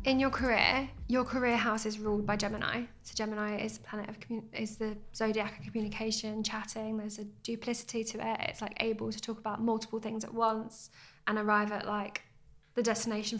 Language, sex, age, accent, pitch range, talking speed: English, female, 10-29, British, 215-230 Hz, 195 wpm